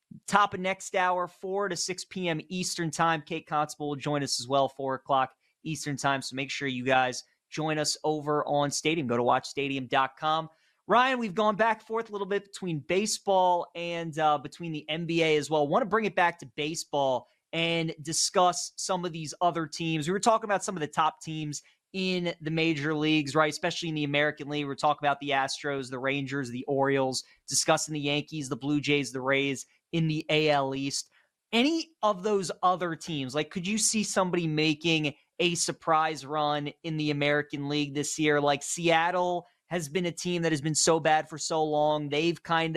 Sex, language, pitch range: male, English, 150-175 Hz